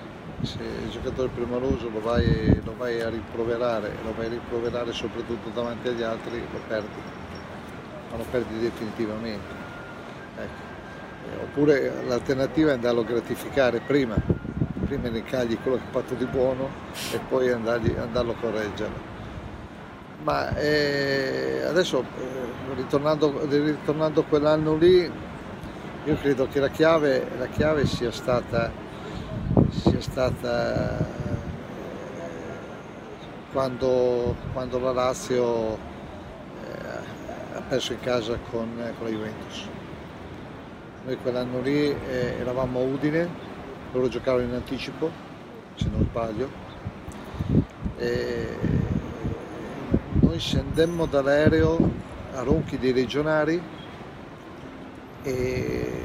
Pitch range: 115-140 Hz